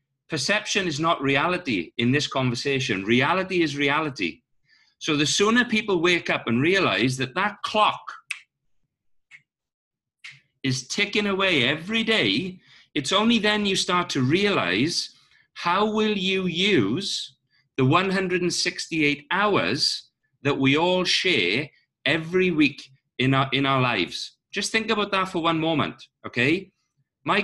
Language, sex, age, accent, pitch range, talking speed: English, male, 40-59, British, 135-185 Hz, 130 wpm